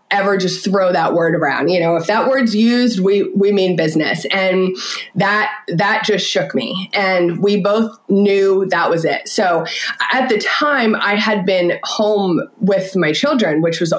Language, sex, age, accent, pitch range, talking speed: English, female, 20-39, American, 185-230 Hz, 180 wpm